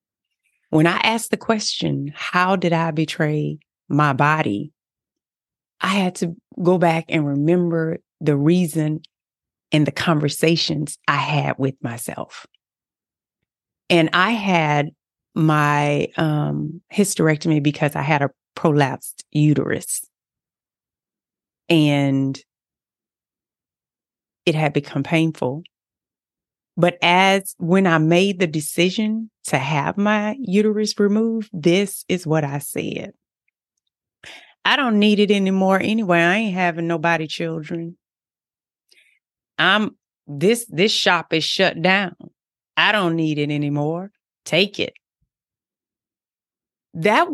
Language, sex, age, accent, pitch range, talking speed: English, female, 30-49, American, 150-195 Hz, 110 wpm